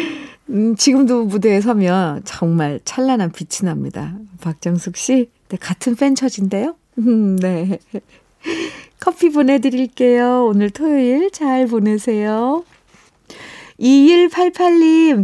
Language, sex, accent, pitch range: Korean, female, native, 180-255 Hz